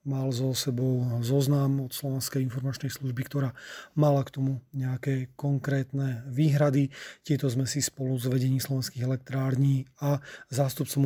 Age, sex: 30-49, male